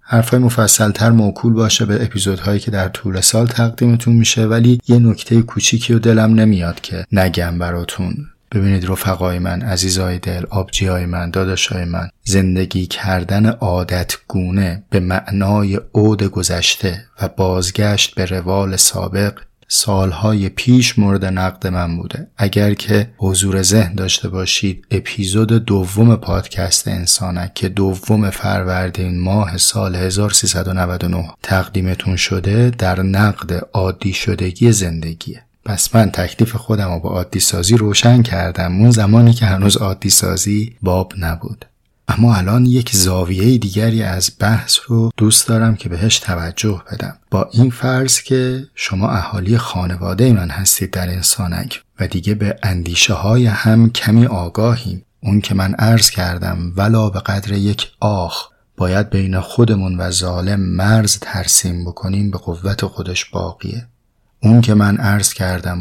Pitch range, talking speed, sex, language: 95-110 Hz, 140 wpm, male, Persian